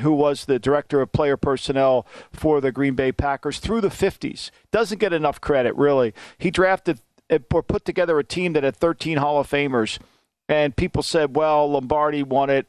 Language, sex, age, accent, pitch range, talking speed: English, male, 50-69, American, 135-160 Hz, 190 wpm